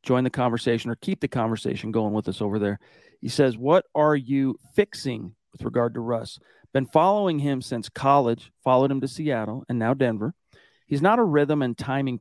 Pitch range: 115-140 Hz